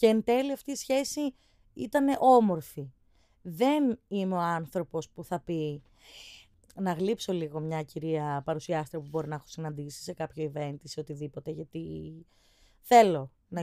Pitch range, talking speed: 150-210 Hz, 155 wpm